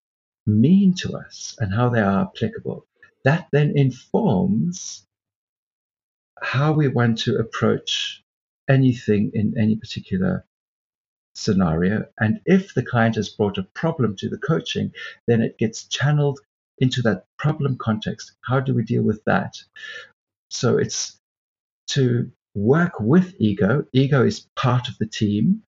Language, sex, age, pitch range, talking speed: English, male, 50-69, 110-150 Hz, 135 wpm